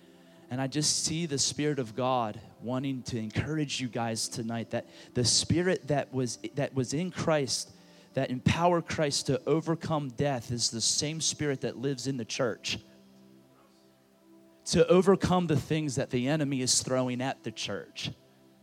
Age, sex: 30-49, male